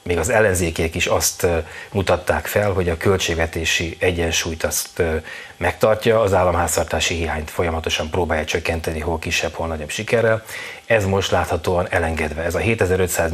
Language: Hungarian